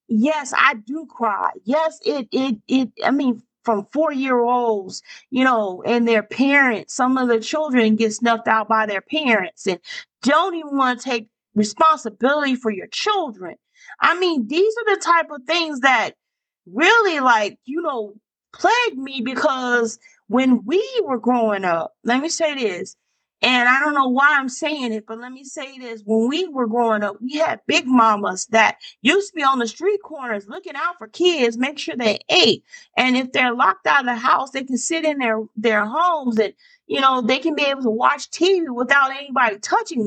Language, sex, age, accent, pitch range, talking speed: English, female, 40-59, American, 235-310 Hz, 195 wpm